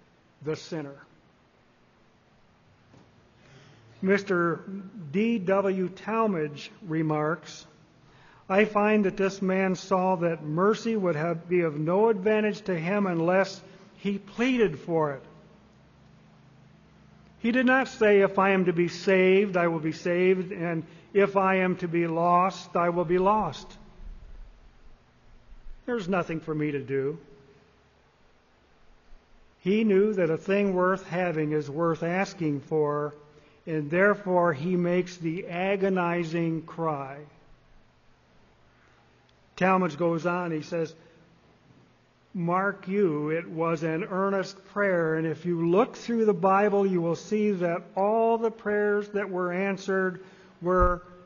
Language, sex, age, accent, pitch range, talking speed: English, male, 50-69, American, 155-195 Hz, 125 wpm